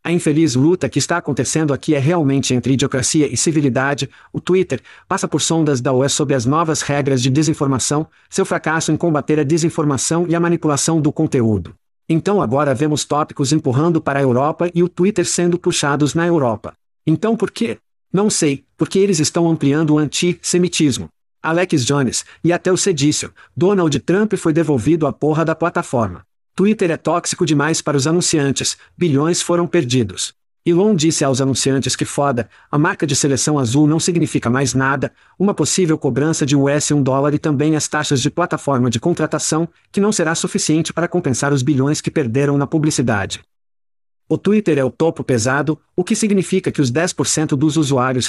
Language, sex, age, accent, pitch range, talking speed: Portuguese, male, 50-69, Brazilian, 140-170 Hz, 175 wpm